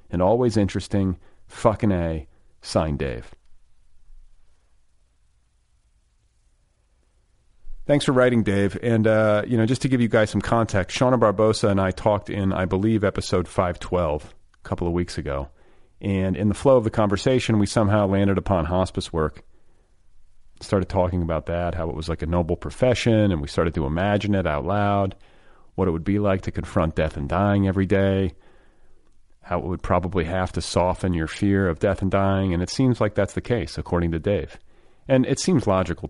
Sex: male